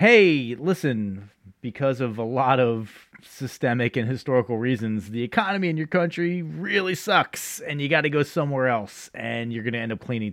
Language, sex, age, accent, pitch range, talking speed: English, male, 30-49, American, 105-135 Hz, 175 wpm